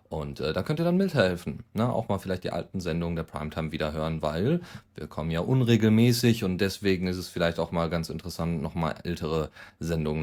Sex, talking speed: male, 210 wpm